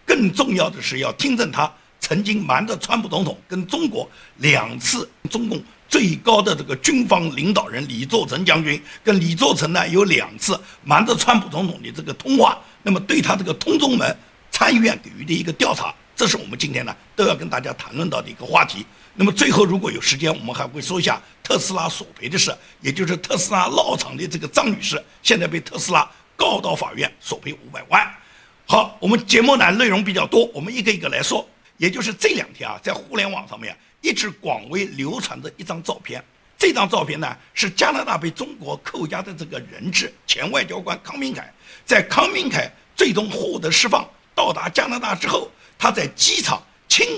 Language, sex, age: Chinese, male, 60-79